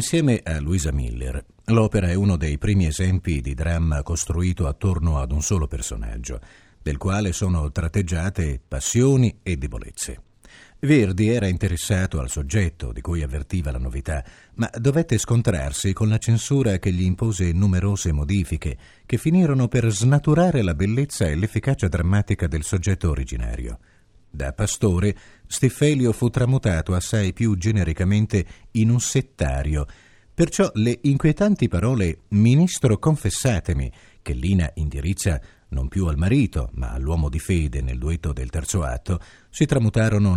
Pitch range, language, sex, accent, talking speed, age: 80-110 Hz, Italian, male, native, 140 wpm, 40-59